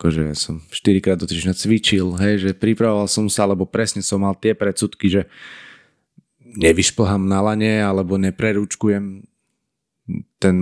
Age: 20-39